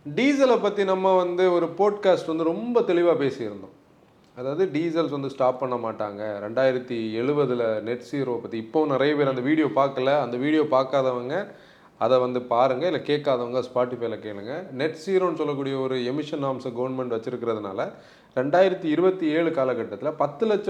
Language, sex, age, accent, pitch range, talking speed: Tamil, male, 30-49, native, 135-190 Hz, 140 wpm